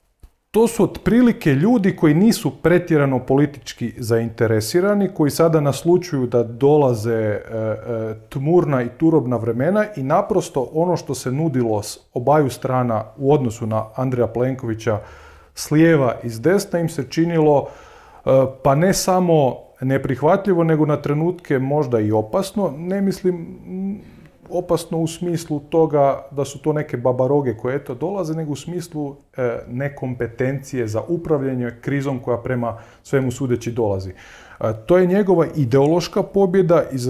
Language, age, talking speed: Croatian, 30-49, 140 wpm